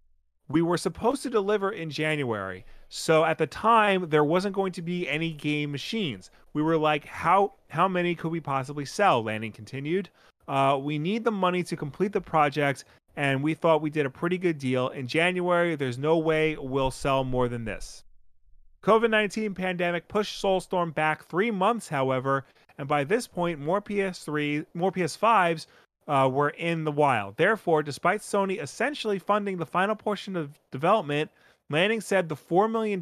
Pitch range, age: 140-185 Hz, 30-49